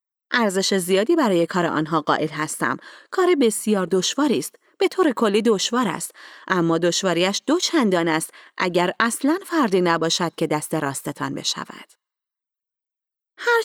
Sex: female